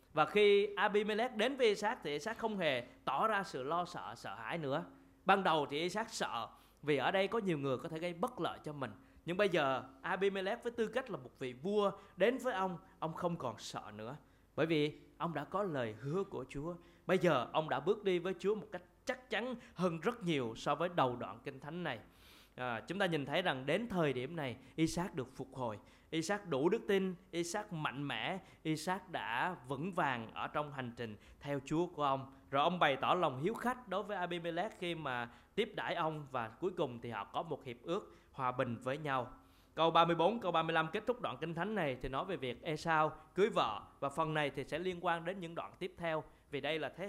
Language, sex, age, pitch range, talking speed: Vietnamese, male, 20-39, 135-190 Hz, 230 wpm